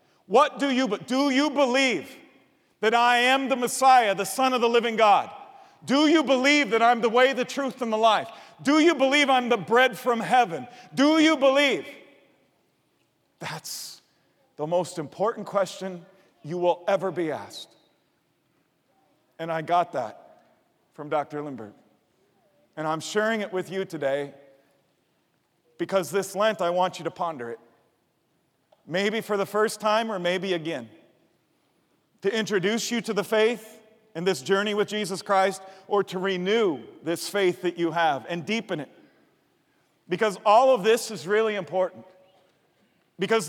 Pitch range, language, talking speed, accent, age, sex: 185-240 Hz, English, 155 wpm, American, 40-59, male